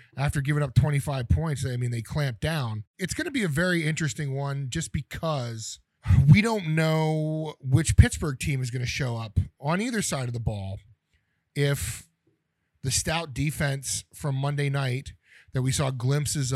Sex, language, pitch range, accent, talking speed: male, English, 115-145 Hz, American, 175 wpm